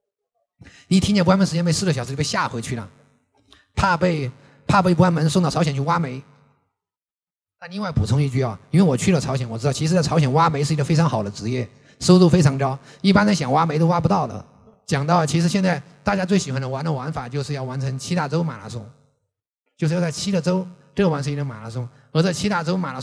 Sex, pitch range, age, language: male, 135-180 Hz, 30-49, Chinese